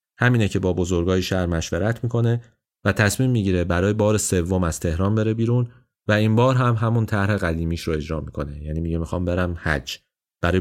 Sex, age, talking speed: male, 30-49, 185 wpm